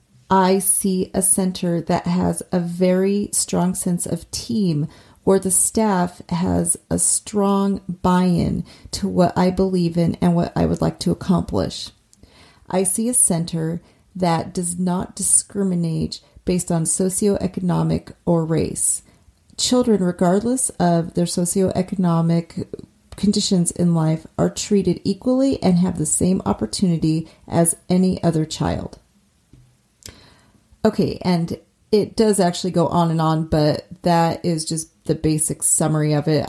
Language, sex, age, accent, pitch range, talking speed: English, female, 30-49, American, 160-195 Hz, 135 wpm